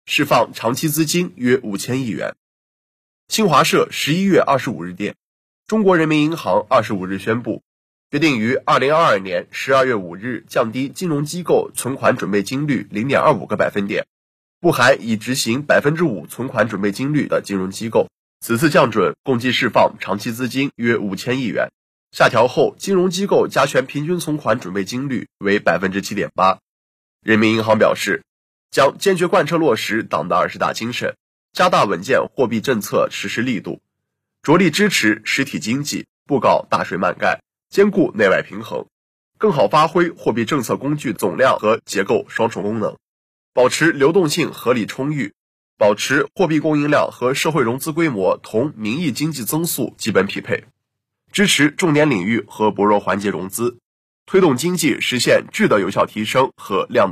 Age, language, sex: 20-39, Chinese, male